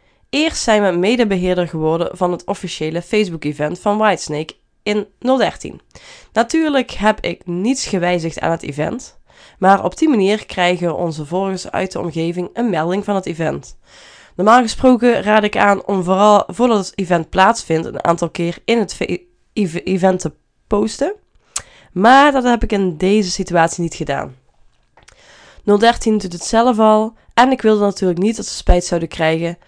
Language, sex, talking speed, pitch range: Dutch, female, 160 wpm, 170-220 Hz